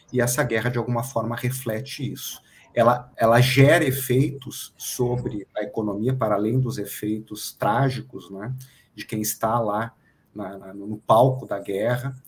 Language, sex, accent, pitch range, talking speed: Portuguese, male, Brazilian, 105-125 Hz, 145 wpm